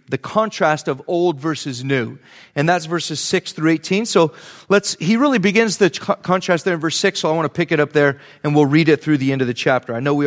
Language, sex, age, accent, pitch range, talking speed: English, male, 30-49, American, 150-215 Hz, 270 wpm